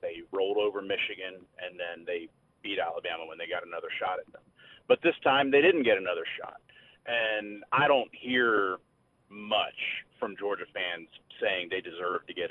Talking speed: 175 wpm